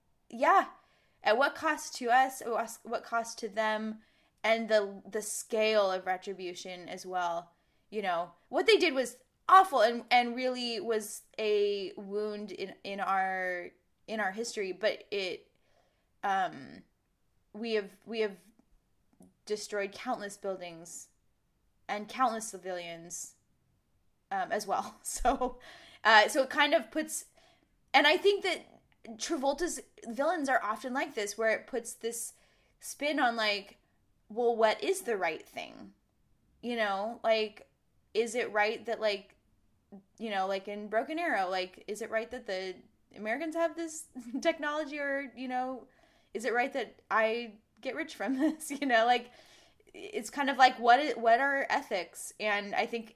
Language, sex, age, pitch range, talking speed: English, female, 10-29, 210-285 Hz, 150 wpm